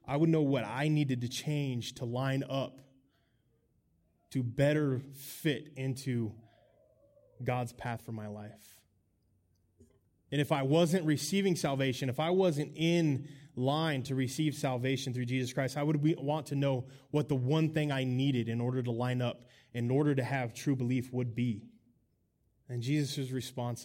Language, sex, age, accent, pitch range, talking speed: English, male, 20-39, American, 115-140 Hz, 160 wpm